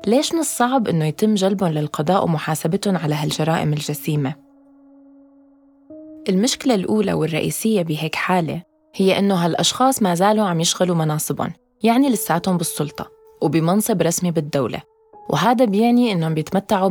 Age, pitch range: 20-39, 170-245 Hz